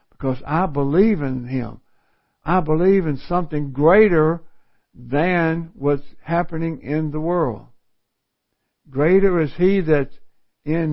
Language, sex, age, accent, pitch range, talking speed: English, male, 60-79, American, 135-175 Hz, 115 wpm